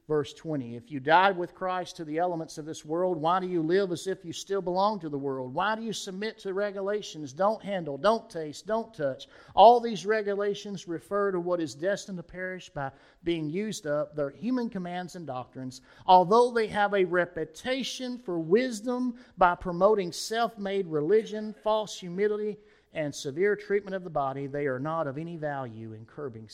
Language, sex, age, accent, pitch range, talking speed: English, male, 50-69, American, 140-190 Hz, 190 wpm